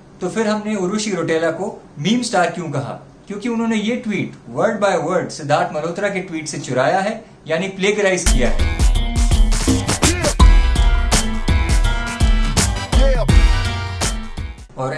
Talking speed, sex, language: 110 wpm, male, Hindi